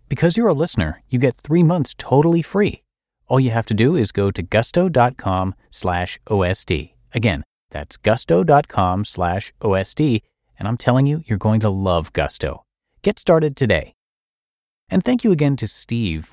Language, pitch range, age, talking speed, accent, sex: English, 90-125 Hz, 30-49, 160 wpm, American, male